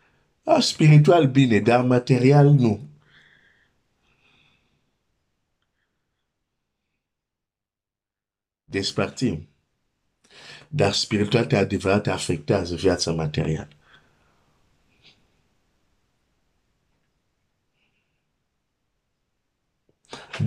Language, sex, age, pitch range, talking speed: Romanian, male, 50-69, 100-135 Hz, 40 wpm